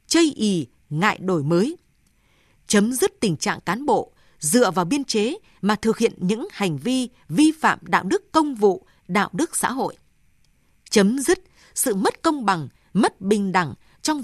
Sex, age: female, 20-39